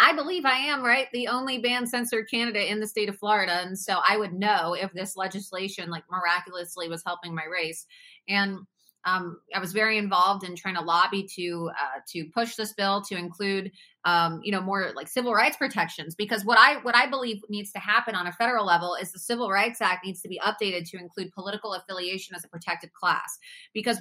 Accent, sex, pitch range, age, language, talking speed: American, female, 175-215 Hz, 30-49, English, 215 wpm